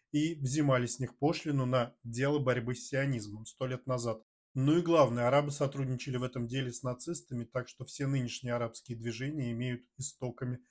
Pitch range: 125-145 Hz